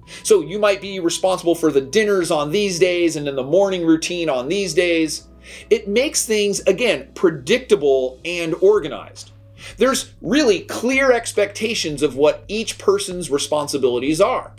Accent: American